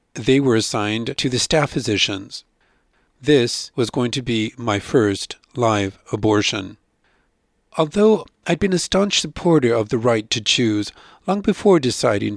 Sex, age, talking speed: male, 50-69, 145 wpm